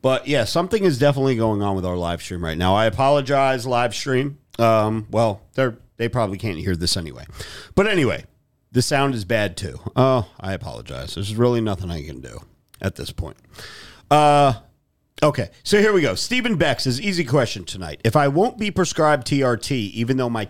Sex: male